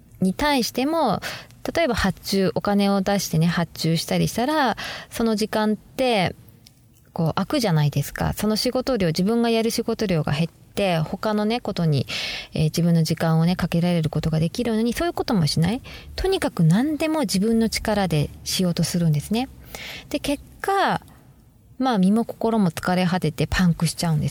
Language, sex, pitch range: Japanese, female, 165-235 Hz